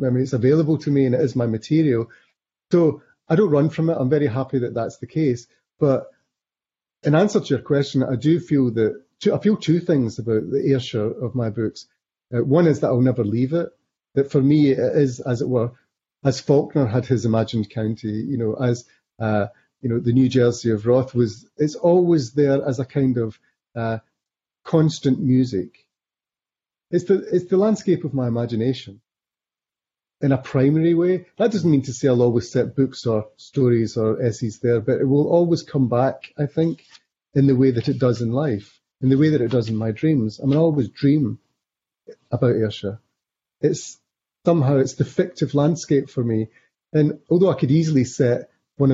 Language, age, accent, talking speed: English, 30-49, British, 200 wpm